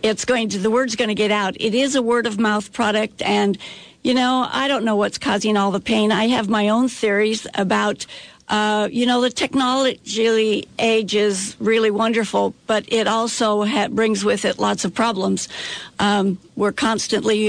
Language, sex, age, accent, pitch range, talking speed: English, female, 60-79, American, 205-230 Hz, 180 wpm